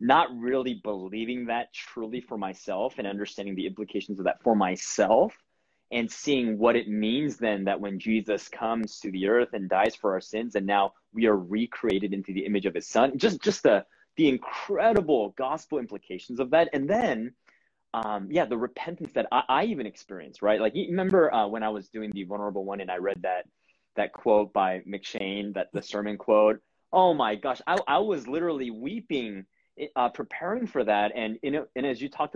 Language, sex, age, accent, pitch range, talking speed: English, male, 20-39, American, 105-140 Hz, 195 wpm